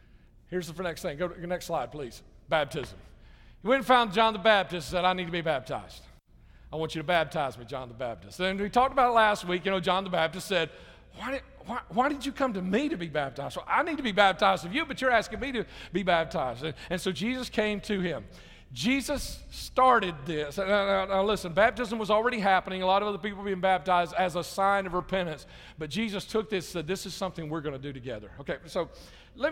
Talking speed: 245 wpm